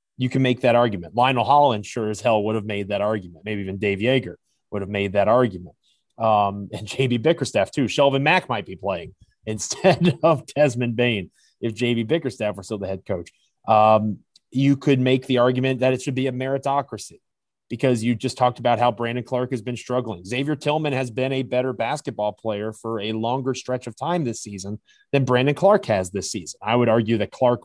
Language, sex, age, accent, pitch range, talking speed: English, male, 30-49, American, 105-130 Hz, 210 wpm